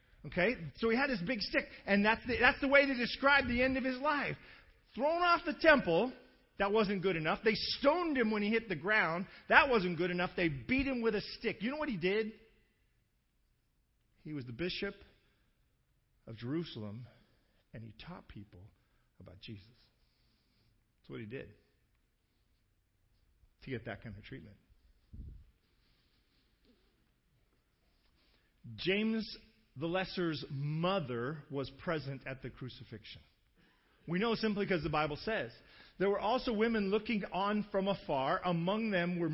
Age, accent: 50-69, American